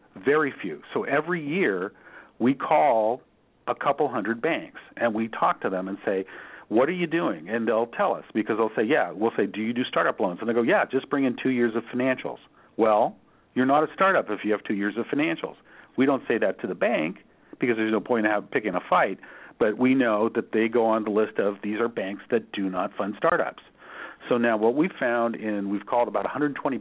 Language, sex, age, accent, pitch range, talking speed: English, male, 50-69, American, 105-130 Hz, 230 wpm